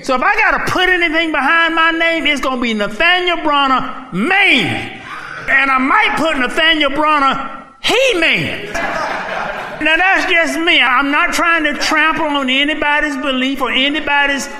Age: 50-69